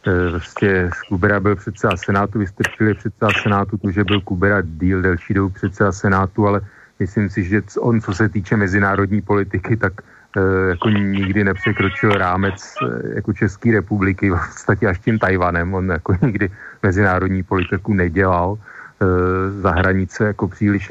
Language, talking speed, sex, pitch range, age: Slovak, 155 wpm, male, 95-105 Hz, 40-59